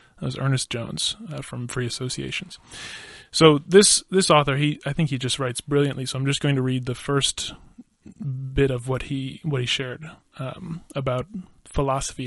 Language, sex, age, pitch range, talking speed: English, male, 20-39, 135-165 Hz, 180 wpm